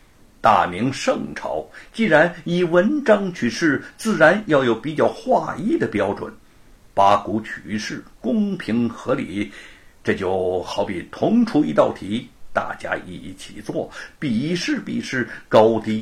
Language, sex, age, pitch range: Chinese, male, 60-79, 155-240 Hz